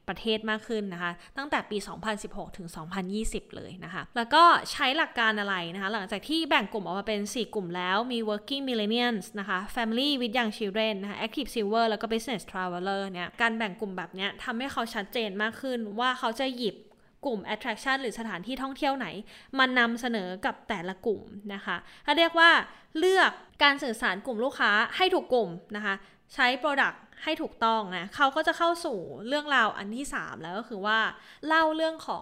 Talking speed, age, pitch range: 50 wpm, 20-39, 200-260 Hz